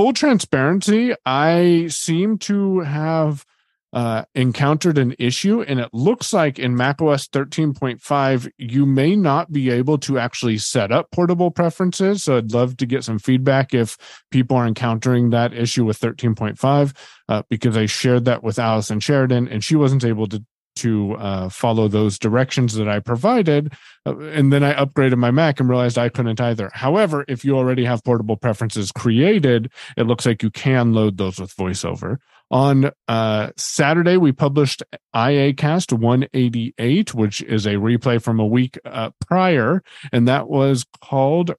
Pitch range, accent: 115-145 Hz, American